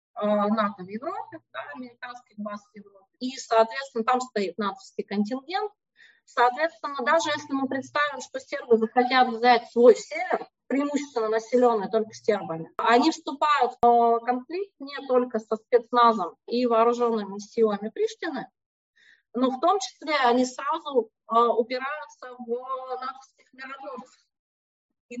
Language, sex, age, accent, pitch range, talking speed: Russian, female, 30-49, native, 225-285 Hz, 110 wpm